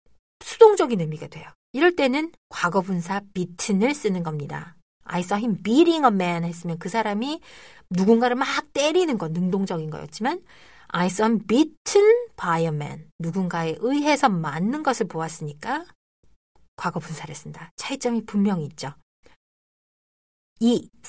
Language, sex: Korean, female